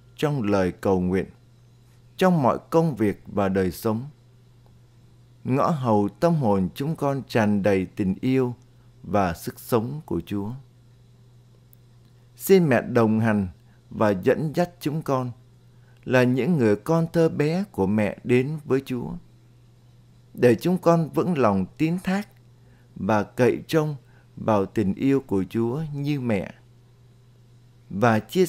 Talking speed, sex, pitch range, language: 135 wpm, male, 115-130 Hz, Vietnamese